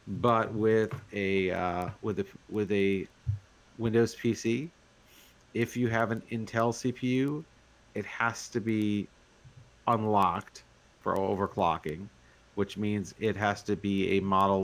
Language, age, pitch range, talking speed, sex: English, 40-59, 95-115 Hz, 125 wpm, male